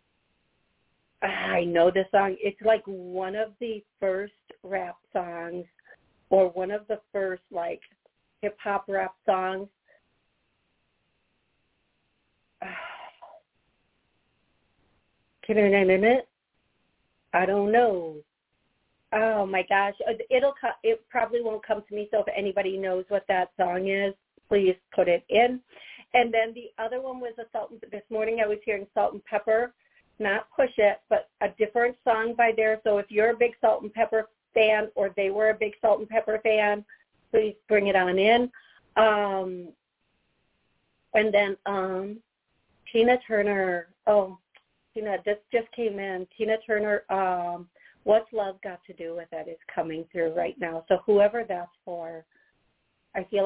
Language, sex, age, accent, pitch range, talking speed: English, female, 40-59, American, 190-220 Hz, 155 wpm